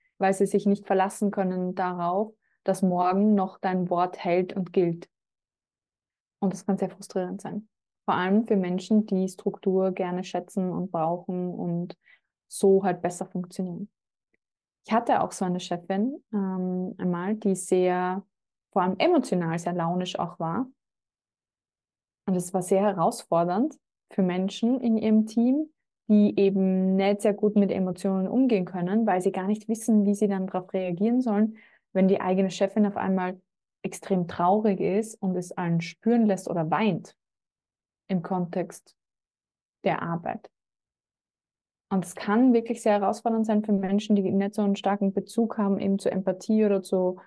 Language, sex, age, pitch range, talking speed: German, female, 20-39, 185-210 Hz, 155 wpm